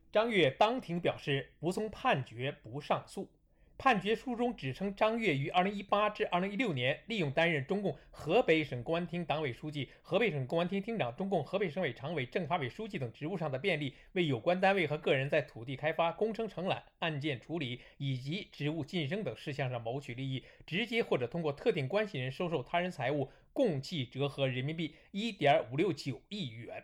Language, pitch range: Chinese, 140-205 Hz